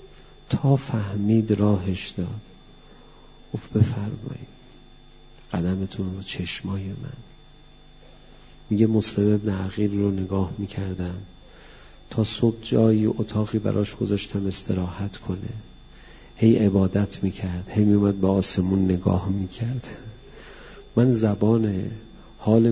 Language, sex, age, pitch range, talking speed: Persian, male, 40-59, 100-115 Hz, 105 wpm